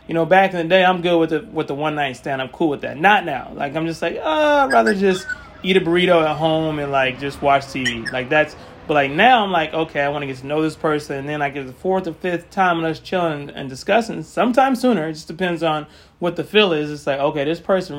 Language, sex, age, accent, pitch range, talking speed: English, male, 30-49, American, 145-185 Hz, 280 wpm